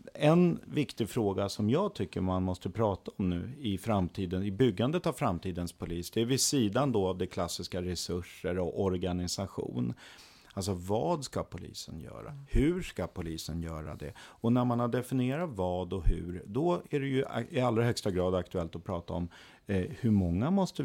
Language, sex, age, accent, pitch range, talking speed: Swedish, male, 50-69, native, 90-120 Hz, 180 wpm